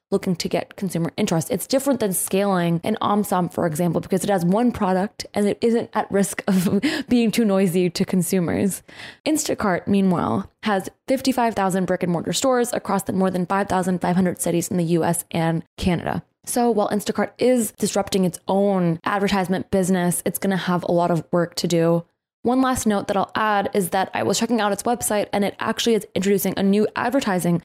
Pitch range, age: 180-215 Hz, 20-39